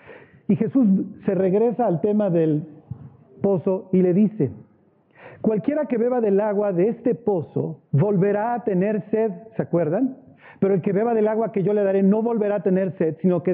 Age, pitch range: 40-59, 165-205 Hz